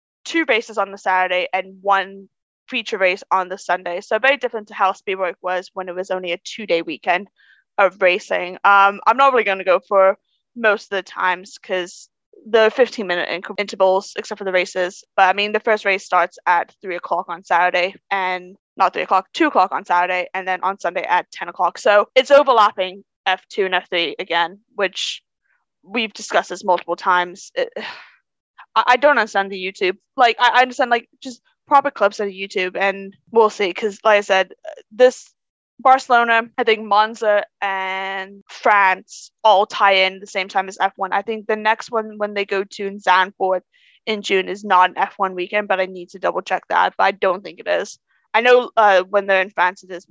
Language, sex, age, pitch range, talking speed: English, female, 20-39, 185-220 Hz, 200 wpm